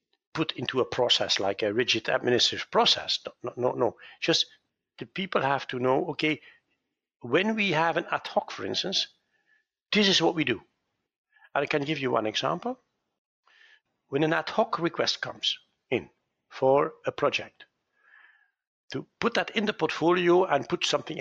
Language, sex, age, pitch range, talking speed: English, male, 60-79, 145-230 Hz, 165 wpm